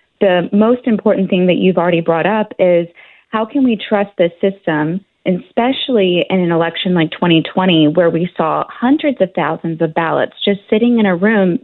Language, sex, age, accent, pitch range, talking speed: English, female, 30-49, American, 170-215 Hz, 180 wpm